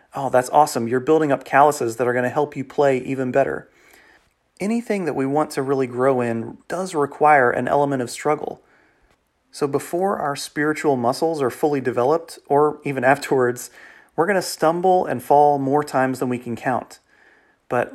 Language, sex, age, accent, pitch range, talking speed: English, male, 30-49, American, 125-145 Hz, 180 wpm